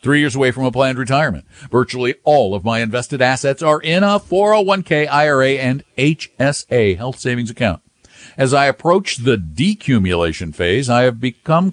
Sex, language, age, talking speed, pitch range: male, English, 50-69, 165 wpm, 105-145 Hz